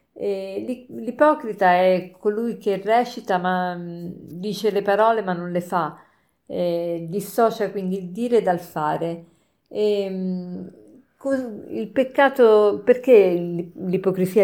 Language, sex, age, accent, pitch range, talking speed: Italian, female, 50-69, native, 180-220 Hz, 110 wpm